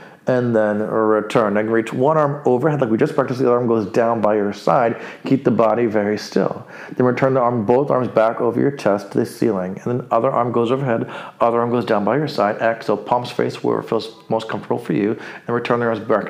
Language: English